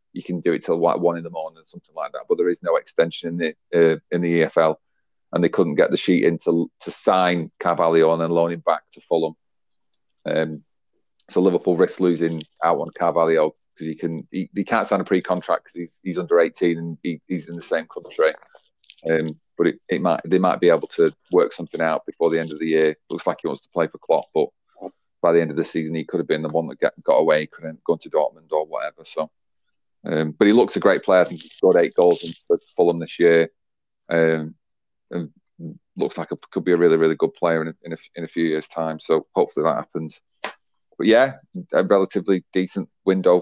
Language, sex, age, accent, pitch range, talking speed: English, male, 40-59, British, 80-95 Hz, 240 wpm